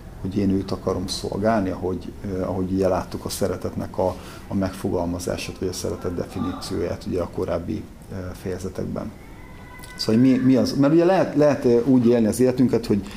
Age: 50-69